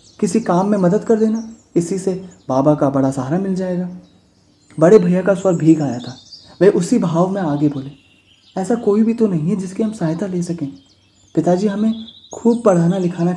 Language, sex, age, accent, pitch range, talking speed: Hindi, male, 30-49, native, 150-200 Hz, 195 wpm